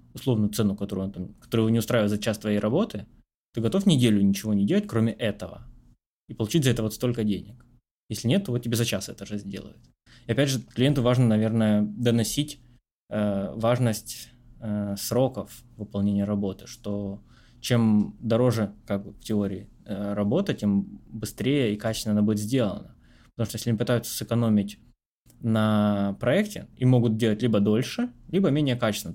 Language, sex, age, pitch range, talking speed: Russian, male, 20-39, 105-120 Hz, 170 wpm